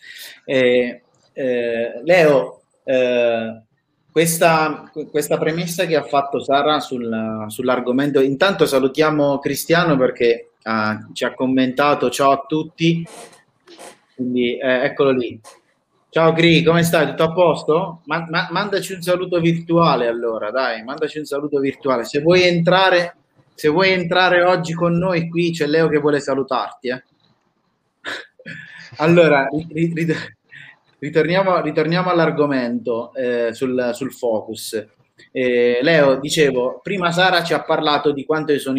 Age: 30-49